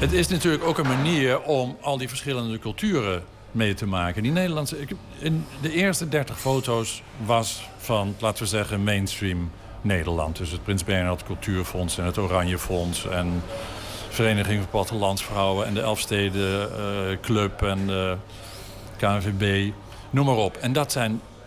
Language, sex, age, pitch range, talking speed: Dutch, male, 50-69, 95-120 Hz, 160 wpm